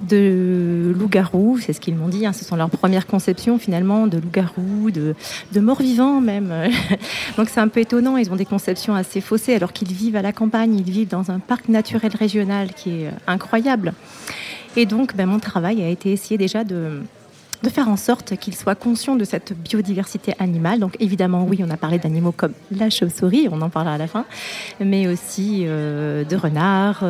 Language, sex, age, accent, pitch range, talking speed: French, female, 40-59, French, 180-215 Hz, 195 wpm